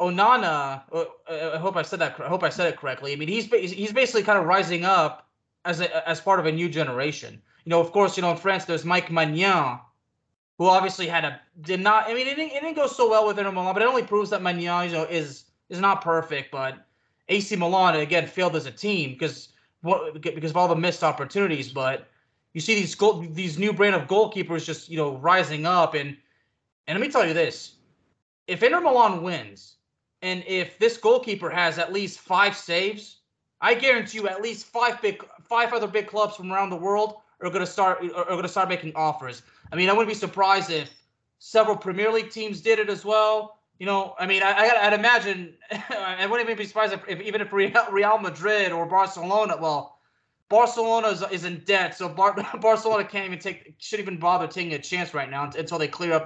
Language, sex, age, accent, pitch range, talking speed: English, male, 20-39, American, 160-210 Hz, 220 wpm